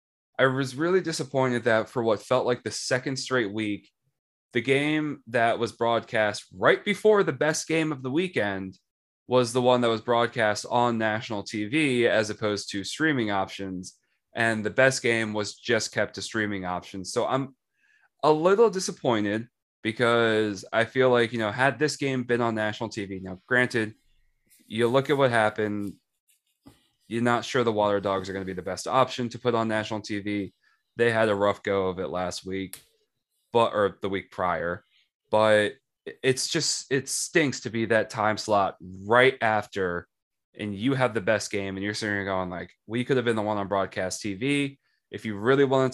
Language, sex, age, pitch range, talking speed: English, male, 20-39, 105-130 Hz, 190 wpm